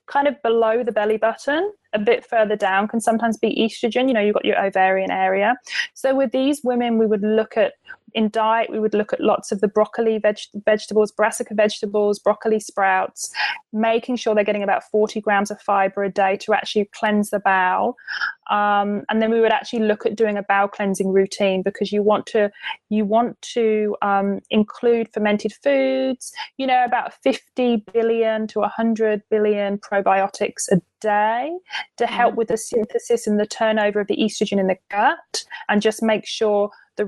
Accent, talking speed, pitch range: British, 185 wpm, 205-235 Hz